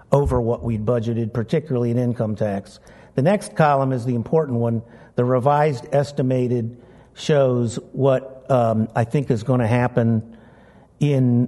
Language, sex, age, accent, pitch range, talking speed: English, male, 50-69, American, 120-135 Hz, 150 wpm